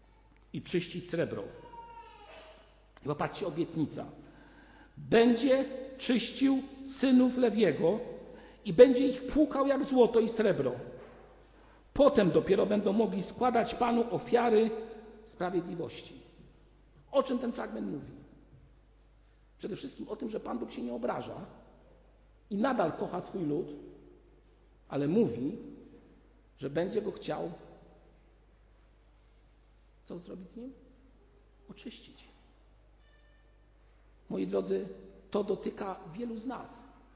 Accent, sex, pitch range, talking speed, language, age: native, male, 170-245 Hz, 105 wpm, Polish, 50-69